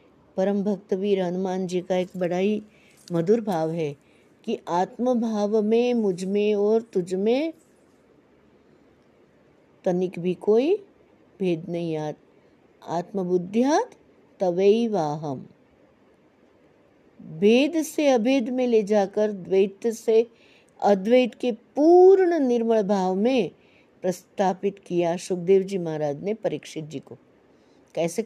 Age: 60-79